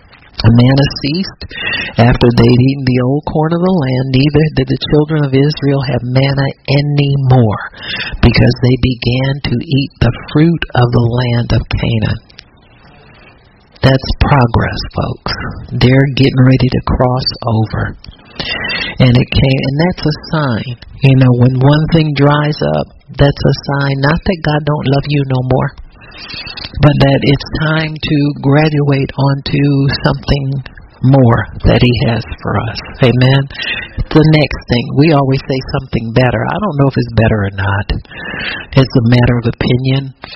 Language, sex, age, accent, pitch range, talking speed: English, male, 60-79, American, 120-140 Hz, 155 wpm